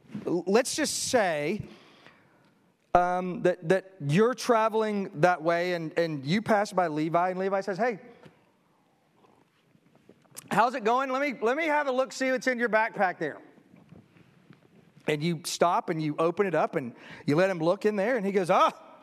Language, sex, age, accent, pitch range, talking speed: German, male, 40-59, American, 185-255 Hz, 175 wpm